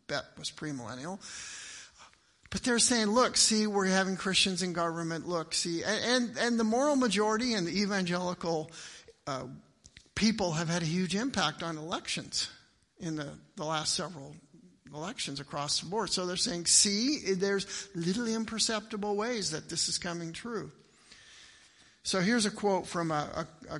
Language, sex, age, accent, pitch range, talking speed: English, male, 50-69, American, 160-205 Hz, 160 wpm